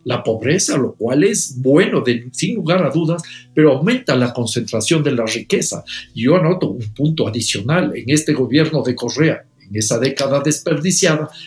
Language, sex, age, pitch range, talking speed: Portuguese, male, 50-69, 120-155 Hz, 160 wpm